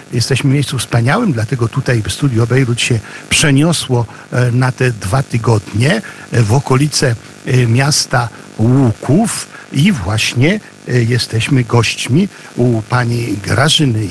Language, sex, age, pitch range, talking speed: Polish, male, 50-69, 120-150 Hz, 105 wpm